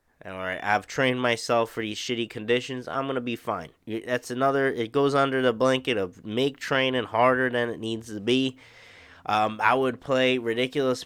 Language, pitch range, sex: English, 115-140 Hz, male